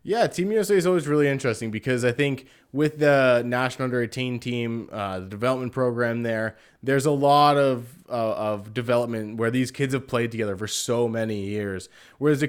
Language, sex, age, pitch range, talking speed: English, male, 20-39, 115-140 Hz, 190 wpm